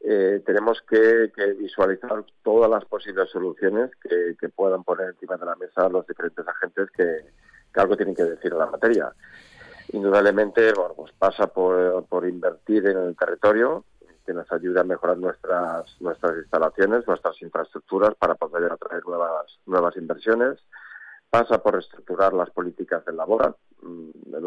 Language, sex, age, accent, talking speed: Spanish, male, 40-59, Spanish, 150 wpm